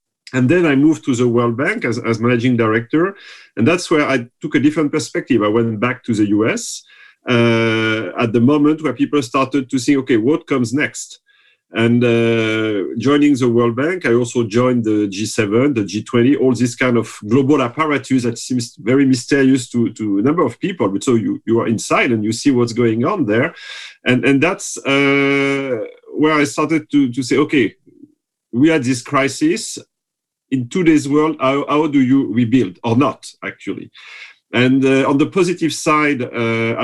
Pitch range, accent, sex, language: 120-150 Hz, French, male, English